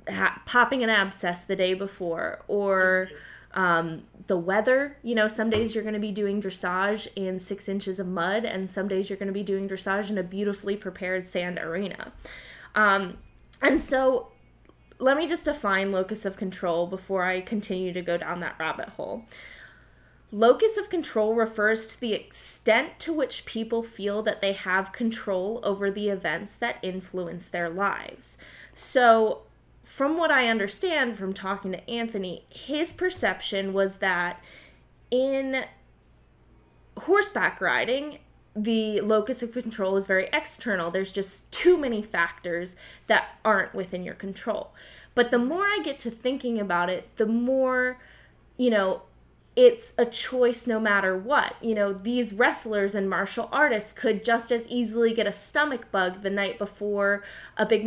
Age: 20-39